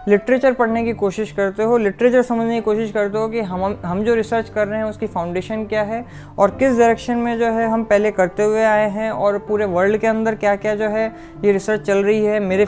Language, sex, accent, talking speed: Hindi, female, native, 240 wpm